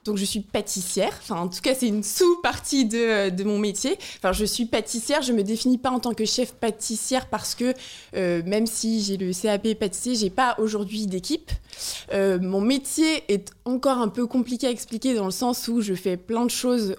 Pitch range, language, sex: 195-240 Hz, French, female